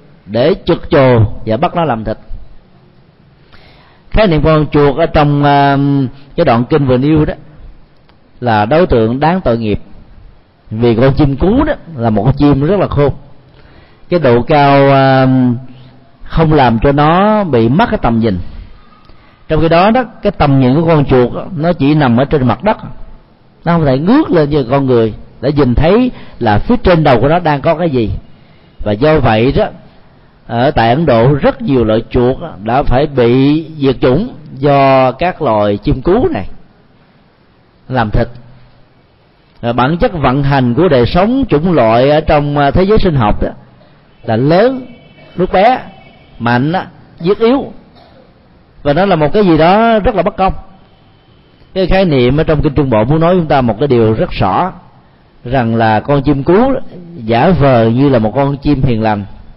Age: 40-59